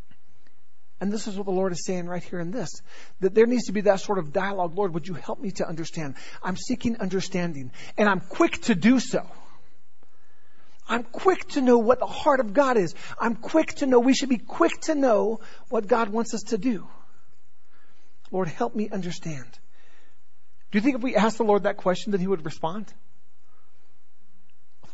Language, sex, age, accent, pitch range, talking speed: English, male, 40-59, American, 130-205 Hz, 195 wpm